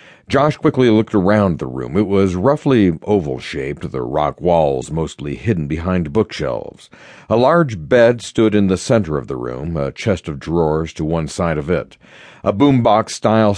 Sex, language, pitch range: male, English, 90-115 Hz